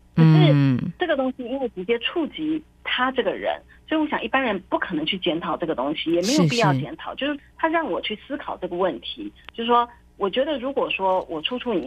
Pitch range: 170-270 Hz